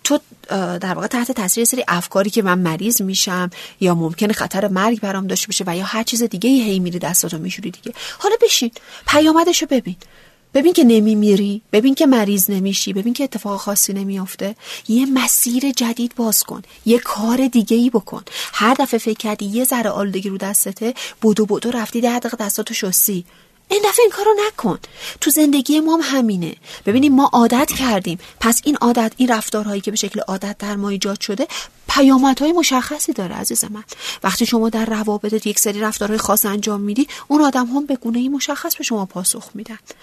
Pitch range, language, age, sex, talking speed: 195-265 Hz, Persian, 40-59, female, 180 wpm